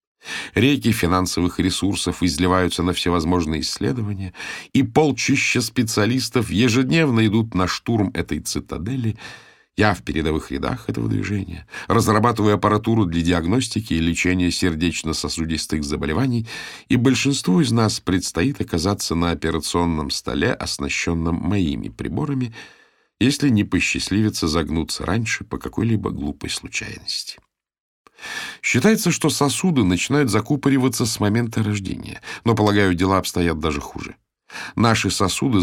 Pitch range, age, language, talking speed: 85-120 Hz, 50-69, Russian, 115 wpm